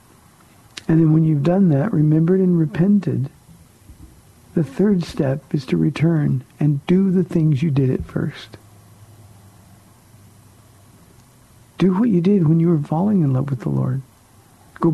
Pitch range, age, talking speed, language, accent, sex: 120-170 Hz, 60-79, 150 wpm, English, American, male